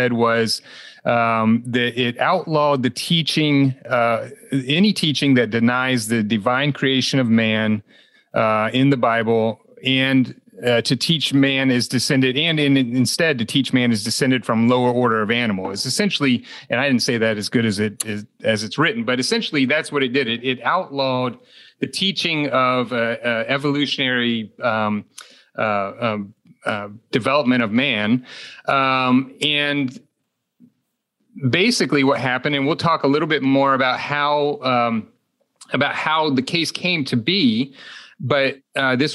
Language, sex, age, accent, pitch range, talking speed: English, male, 40-59, American, 120-145 Hz, 155 wpm